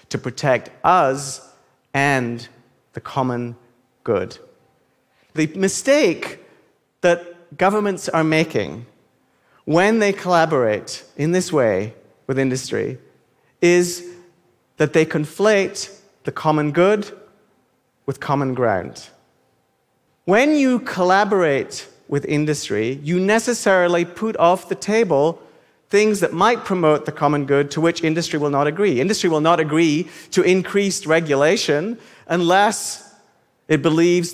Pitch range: 140-190 Hz